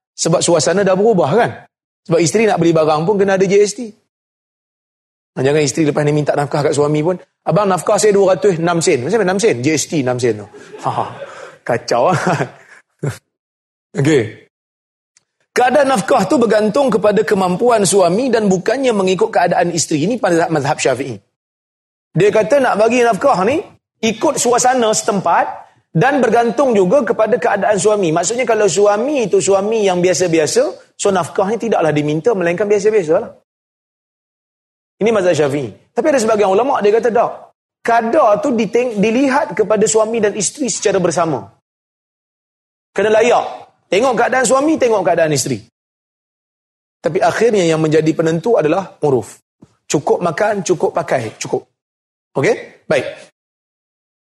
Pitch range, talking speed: 170-235 Hz, 135 wpm